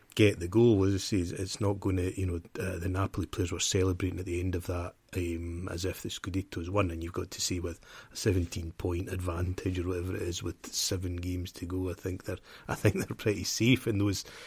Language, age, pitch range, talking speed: English, 30-49, 90-110 Hz, 230 wpm